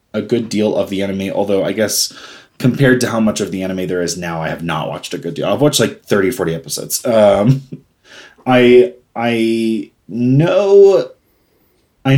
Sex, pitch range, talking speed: male, 95-130 Hz, 180 wpm